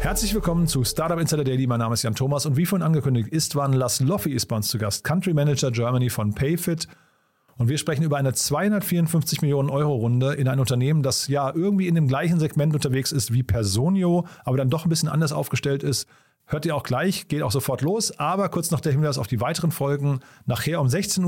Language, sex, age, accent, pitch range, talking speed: German, male, 40-59, German, 130-165 Hz, 225 wpm